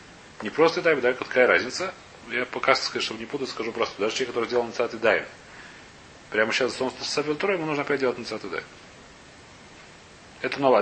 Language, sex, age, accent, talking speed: Russian, male, 30-49, native, 175 wpm